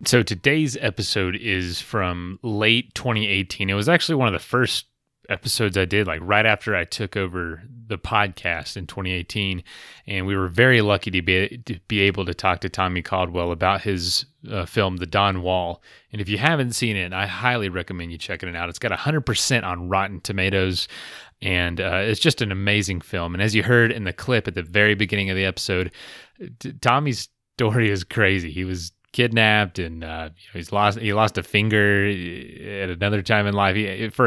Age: 30-49